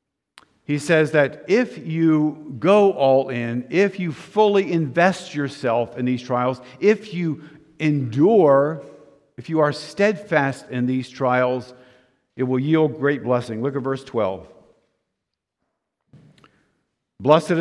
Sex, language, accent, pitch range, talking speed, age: male, English, American, 120-155 Hz, 125 wpm, 50-69